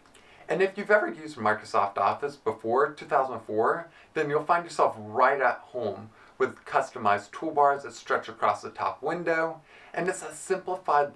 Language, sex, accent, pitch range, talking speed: English, male, American, 115-175 Hz, 155 wpm